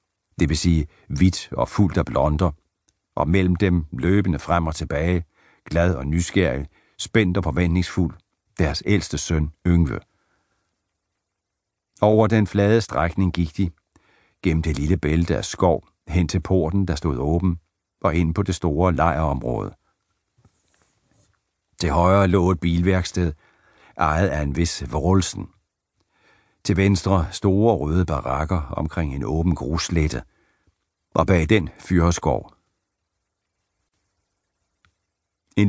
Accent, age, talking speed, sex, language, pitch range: native, 60-79, 125 wpm, male, Danish, 80-100 Hz